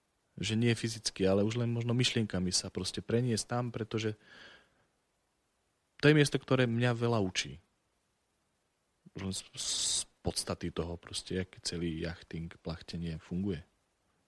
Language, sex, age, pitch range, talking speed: Slovak, male, 40-59, 90-110 Hz, 120 wpm